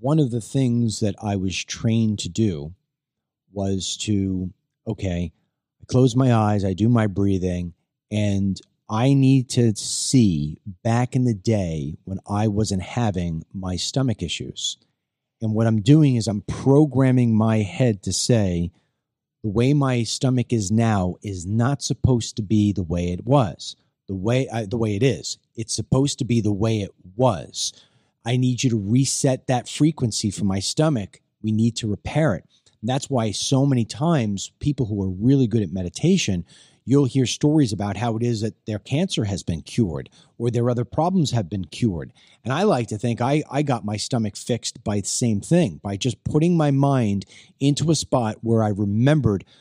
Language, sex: English, male